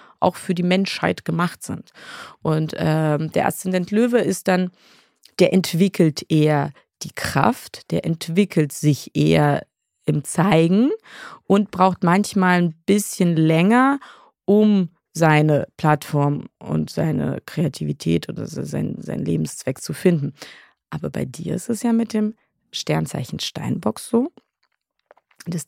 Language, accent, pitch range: German, German, 160-195 Hz